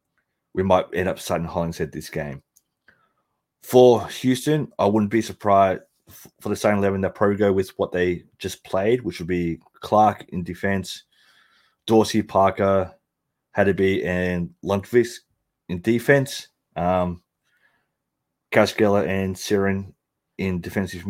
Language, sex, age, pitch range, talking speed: English, male, 20-39, 90-110 Hz, 130 wpm